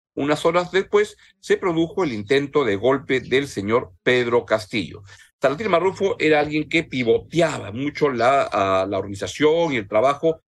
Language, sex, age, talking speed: Spanish, male, 50-69, 155 wpm